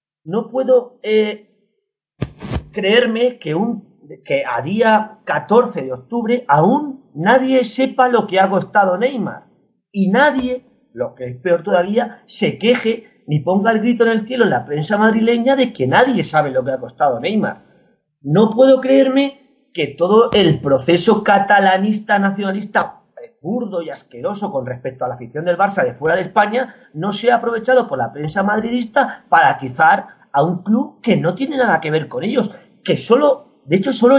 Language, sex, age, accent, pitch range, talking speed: Spanish, male, 40-59, Spanish, 165-245 Hz, 170 wpm